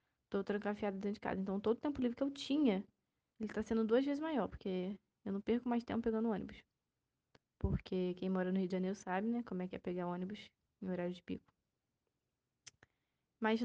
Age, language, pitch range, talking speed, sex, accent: 10-29, Portuguese, 200-250 Hz, 205 wpm, female, Brazilian